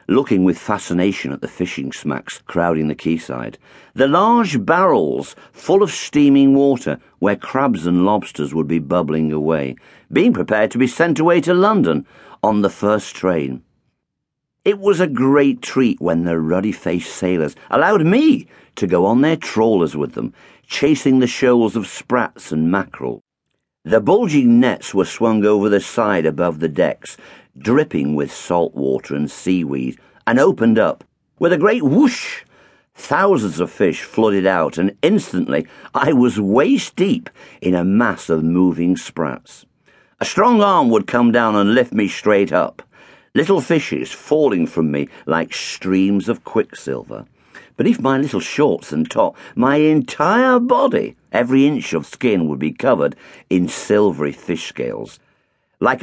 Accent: British